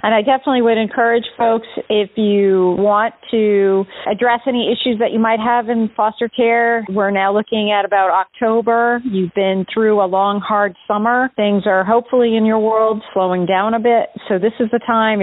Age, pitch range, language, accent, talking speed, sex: 40-59, 190-225 Hz, English, American, 190 wpm, female